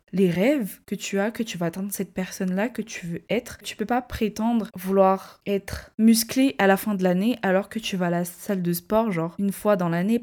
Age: 20-39